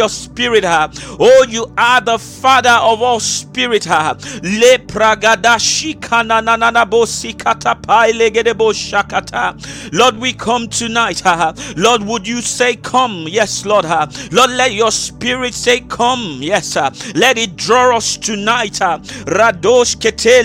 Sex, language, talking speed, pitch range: male, English, 125 wpm, 215-245 Hz